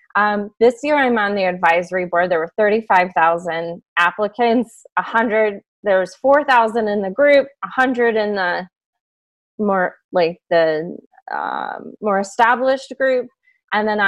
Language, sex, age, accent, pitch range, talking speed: English, female, 20-39, American, 195-270 Hz, 145 wpm